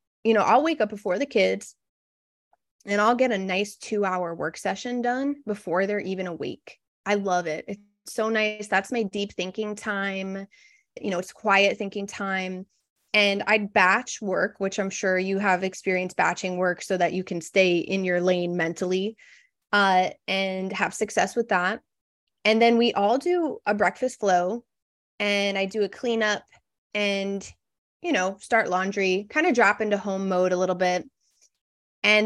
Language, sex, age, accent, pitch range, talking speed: English, female, 20-39, American, 185-225 Hz, 175 wpm